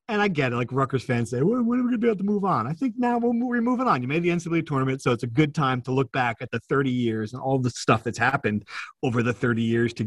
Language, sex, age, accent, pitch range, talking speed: English, male, 40-59, American, 120-150 Hz, 310 wpm